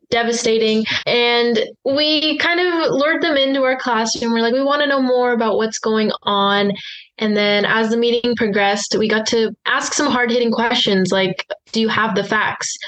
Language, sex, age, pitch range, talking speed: English, female, 10-29, 200-235 Hz, 190 wpm